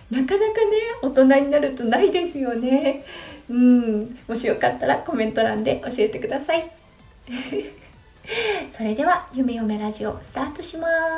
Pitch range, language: 215-295 Hz, Japanese